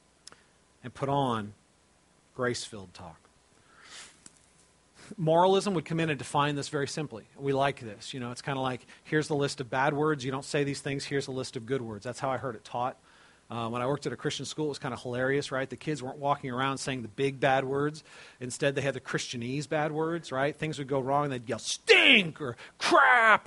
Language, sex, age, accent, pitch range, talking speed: English, male, 40-59, American, 130-165 Hz, 225 wpm